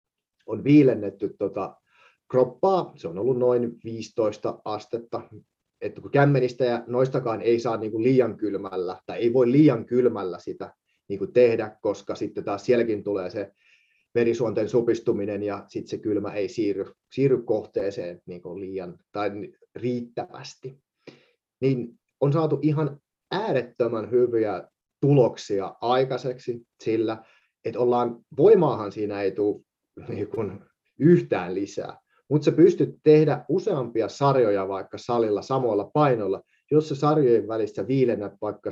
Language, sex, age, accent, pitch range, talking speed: Finnish, male, 30-49, native, 110-140 Hz, 125 wpm